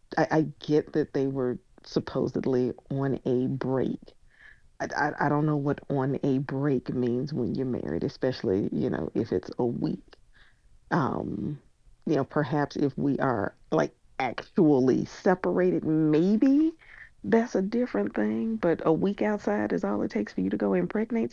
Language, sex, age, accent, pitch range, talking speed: English, female, 40-59, American, 130-180 Hz, 165 wpm